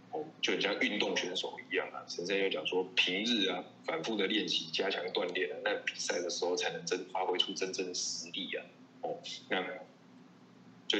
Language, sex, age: Chinese, male, 20-39